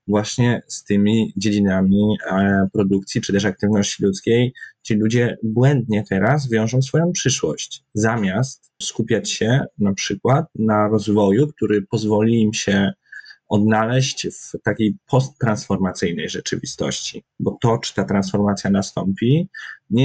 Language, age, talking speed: Polish, 20-39, 115 wpm